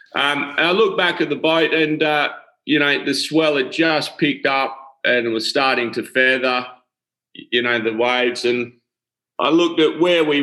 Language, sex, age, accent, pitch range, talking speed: English, male, 30-49, Australian, 115-155 Hz, 195 wpm